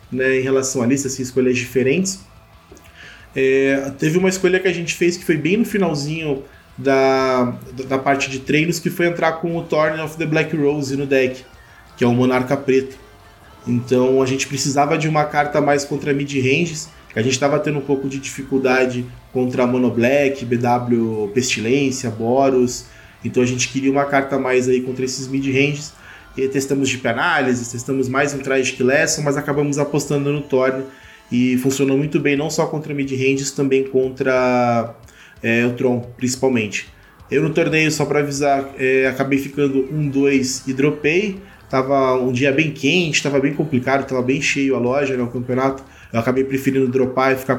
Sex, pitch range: male, 130-145 Hz